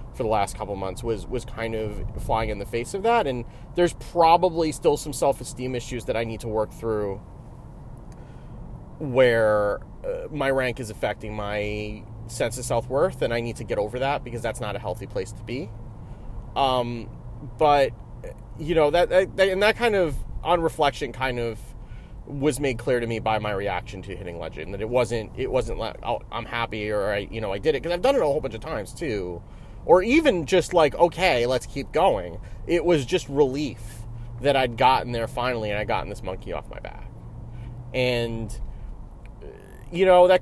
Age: 30-49